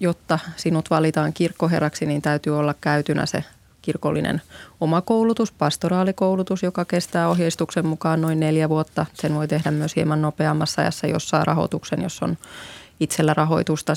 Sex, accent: female, native